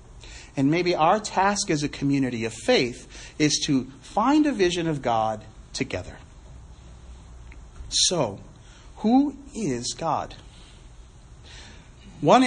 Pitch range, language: 120-190 Hz, English